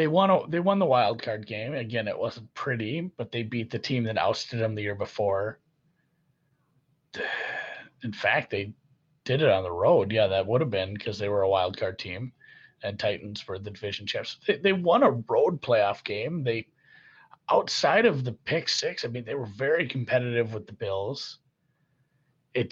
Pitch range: 115-170 Hz